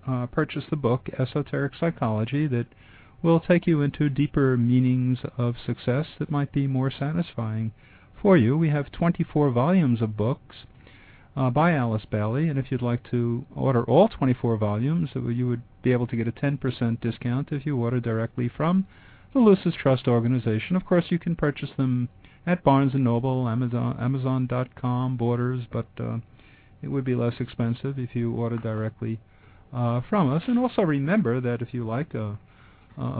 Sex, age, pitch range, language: male, 50-69, 115-145 Hz, English